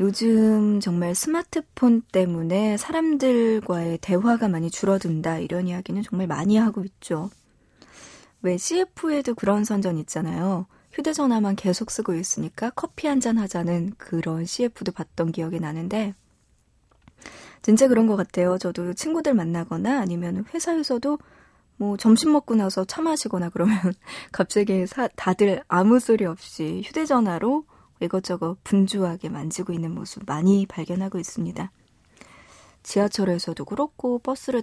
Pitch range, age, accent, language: 180-240 Hz, 20-39, native, Korean